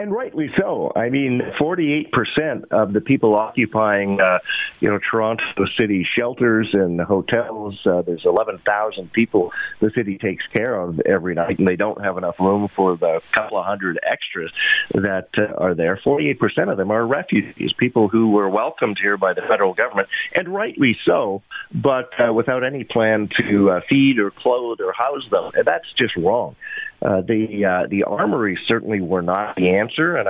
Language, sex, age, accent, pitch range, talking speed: English, male, 40-59, American, 95-120 Hz, 175 wpm